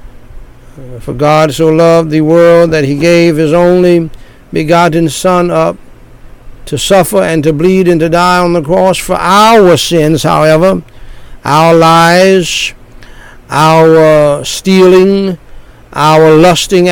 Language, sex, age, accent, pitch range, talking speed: English, male, 60-79, American, 135-170 Hz, 125 wpm